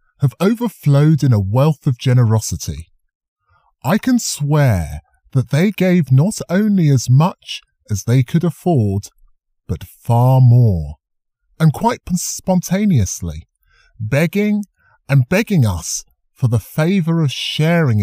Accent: British